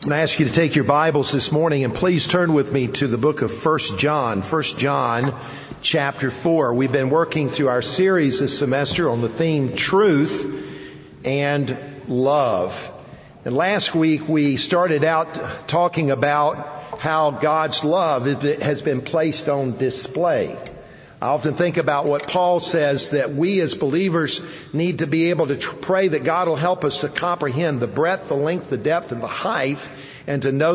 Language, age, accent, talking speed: English, 50-69, American, 175 wpm